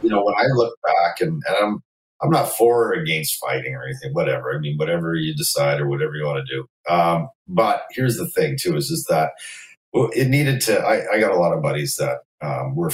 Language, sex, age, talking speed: English, male, 40-59, 235 wpm